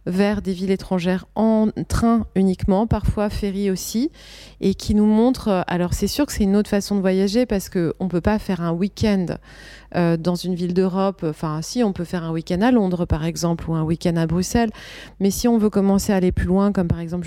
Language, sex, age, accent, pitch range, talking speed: French, female, 30-49, French, 180-215 Hz, 225 wpm